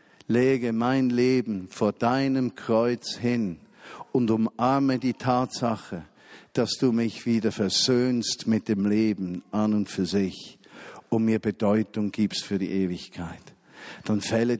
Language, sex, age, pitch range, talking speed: German, male, 50-69, 120-170 Hz, 130 wpm